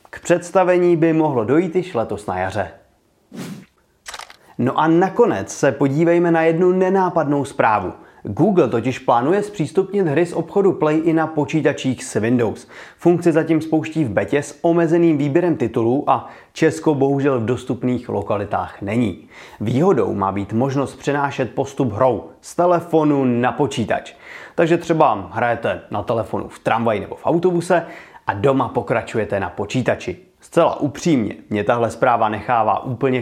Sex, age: male, 30-49